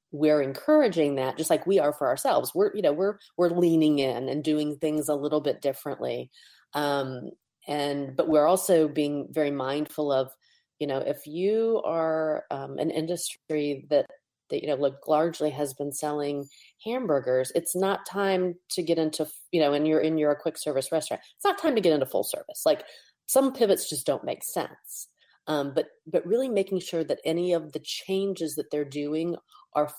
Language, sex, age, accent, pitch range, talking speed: English, female, 30-49, American, 145-180 Hz, 190 wpm